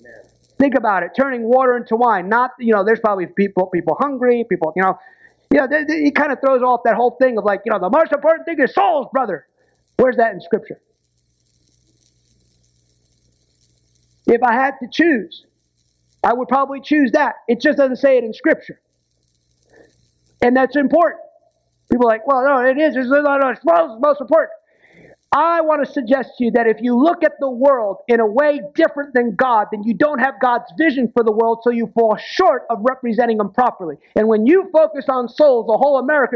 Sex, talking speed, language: male, 200 wpm, English